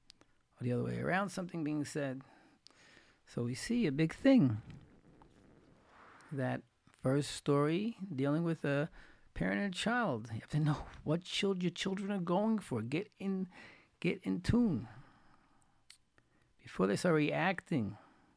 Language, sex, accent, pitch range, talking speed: English, male, American, 125-185 Hz, 145 wpm